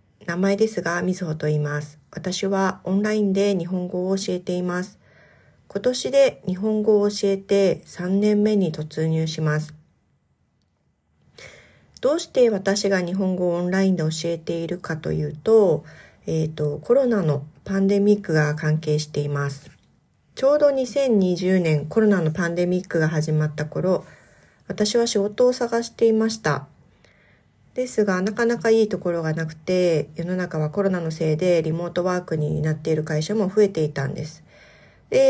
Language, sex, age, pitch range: Japanese, female, 40-59, 155-205 Hz